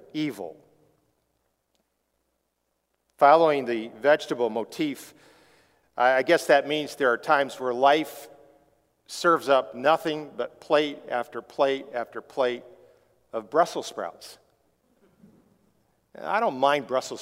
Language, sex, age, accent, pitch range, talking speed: English, male, 50-69, American, 130-175 Hz, 105 wpm